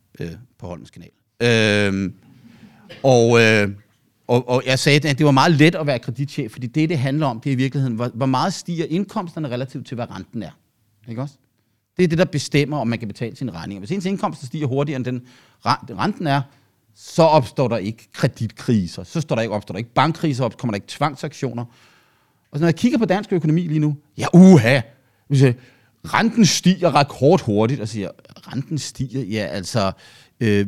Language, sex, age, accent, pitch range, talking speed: Danish, male, 40-59, native, 115-150 Hz, 195 wpm